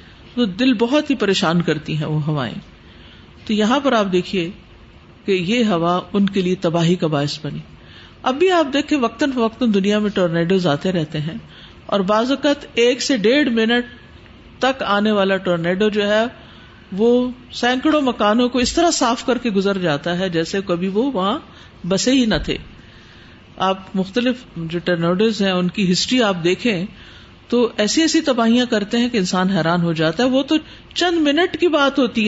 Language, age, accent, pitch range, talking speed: English, 50-69, Indian, 180-255 Hz, 165 wpm